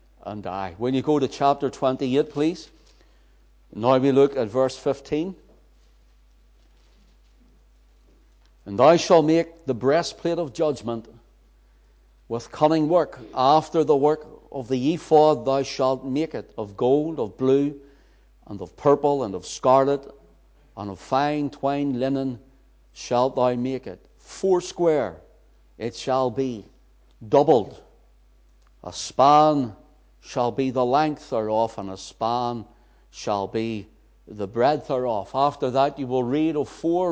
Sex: male